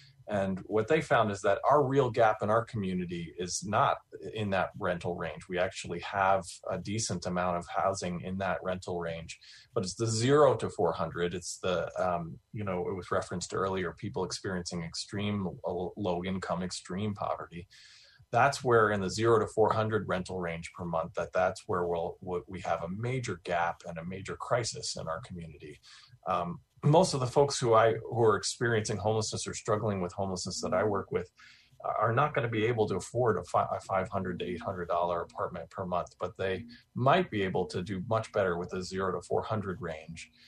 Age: 30-49